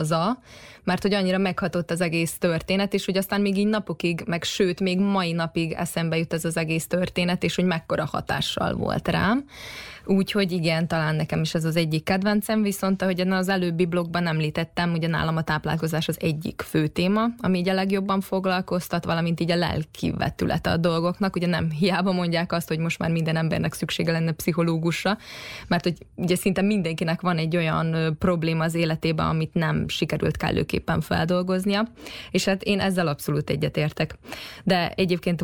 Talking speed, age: 170 wpm, 20-39